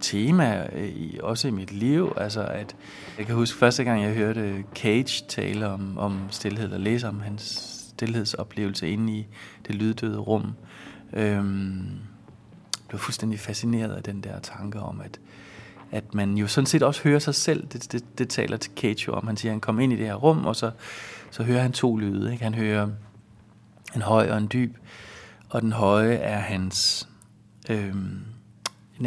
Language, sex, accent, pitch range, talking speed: Danish, male, native, 105-120 Hz, 180 wpm